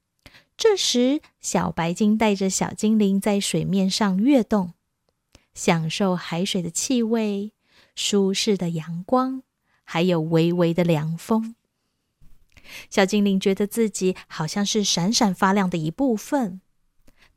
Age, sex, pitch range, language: 20-39, female, 180-235 Hz, Chinese